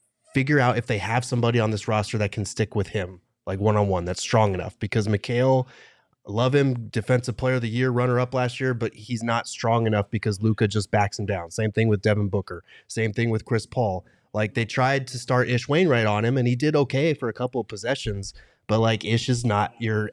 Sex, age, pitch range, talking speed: male, 30-49, 105-130 Hz, 230 wpm